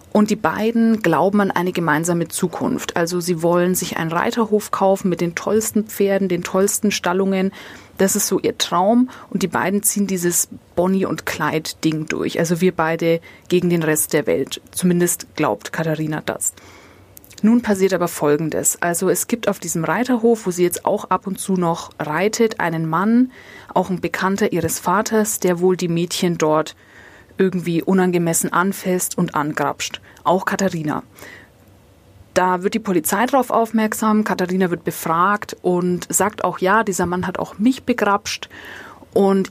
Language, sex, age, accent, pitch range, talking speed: German, female, 30-49, German, 170-205 Hz, 160 wpm